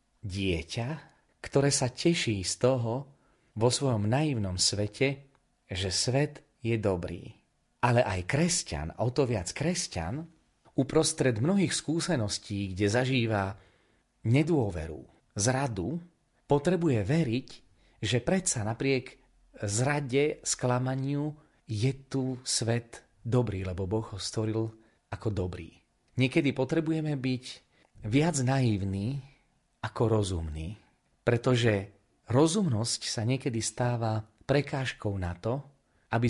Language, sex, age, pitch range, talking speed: Slovak, male, 40-59, 100-135 Hz, 100 wpm